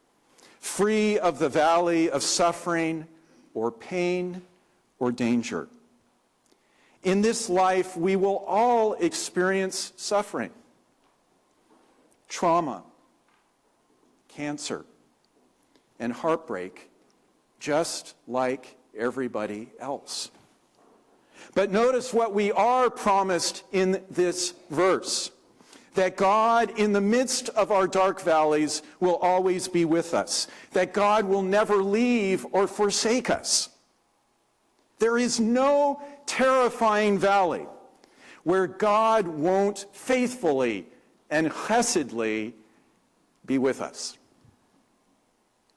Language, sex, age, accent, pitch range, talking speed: English, male, 50-69, American, 160-210 Hz, 95 wpm